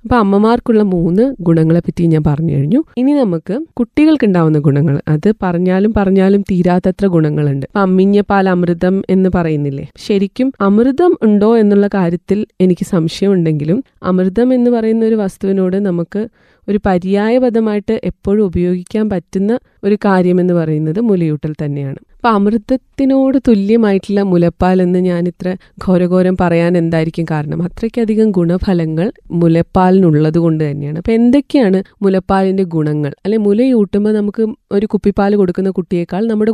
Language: Malayalam